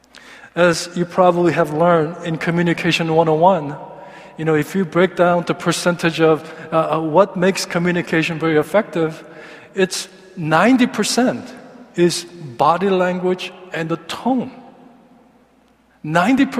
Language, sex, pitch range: Korean, male, 170-230 Hz